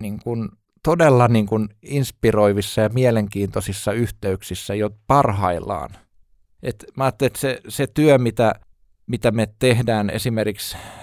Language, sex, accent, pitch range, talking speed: Finnish, male, native, 105-135 Hz, 120 wpm